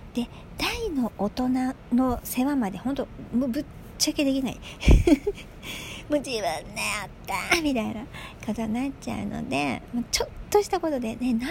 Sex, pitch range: male, 225-315 Hz